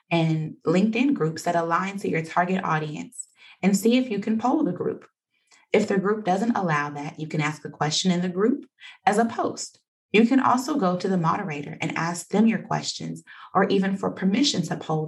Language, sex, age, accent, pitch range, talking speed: English, female, 20-39, American, 165-220 Hz, 205 wpm